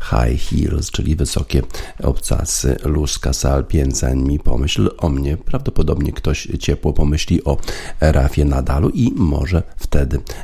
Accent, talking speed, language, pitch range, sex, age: native, 125 wpm, Polish, 70-80 Hz, male, 50-69